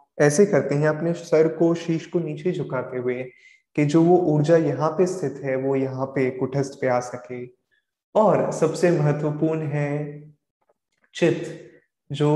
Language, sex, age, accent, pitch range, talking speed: Hindi, male, 20-39, native, 130-160 Hz, 155 wpm